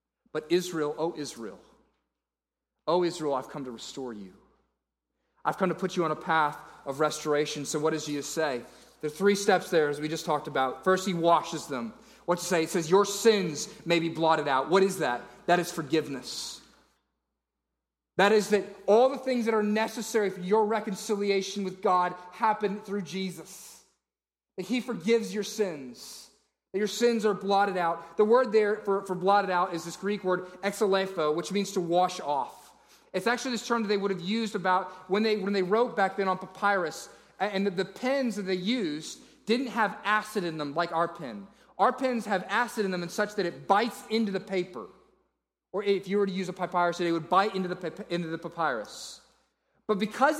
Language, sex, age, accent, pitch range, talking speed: English, male, 30-49, American, 170-215 Hz, 195 wpm